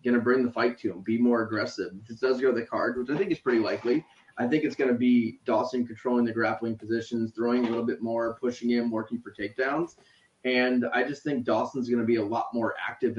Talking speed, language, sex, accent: 235 wpm, English, male, American